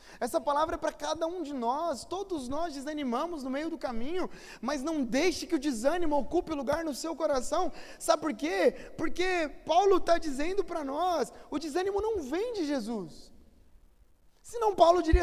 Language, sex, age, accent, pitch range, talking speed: Portuguese, male, 20-39, Brazilian, 265-345 Hz, 175 wpm